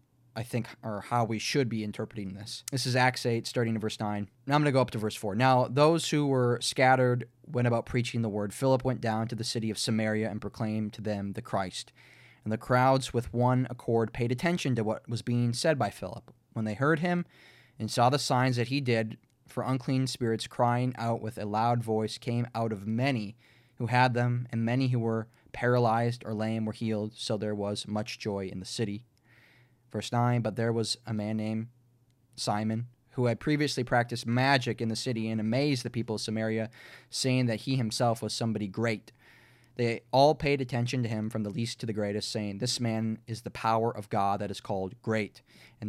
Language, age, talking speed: English, 20-39, 215 wpm